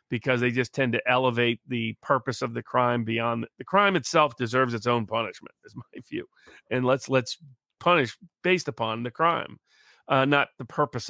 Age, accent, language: 40-59, American, English